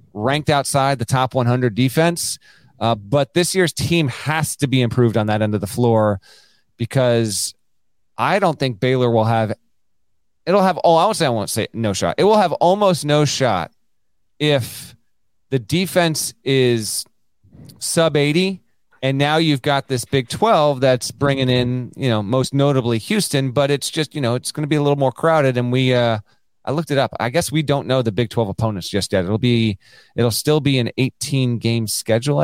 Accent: American